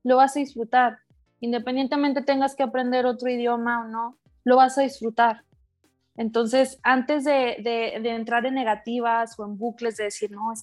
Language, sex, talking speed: Spanish, female, 175 wpm